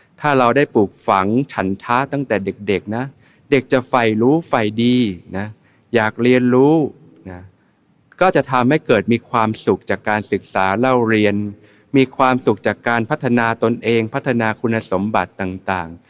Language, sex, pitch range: Thai, male, 100-125 Hz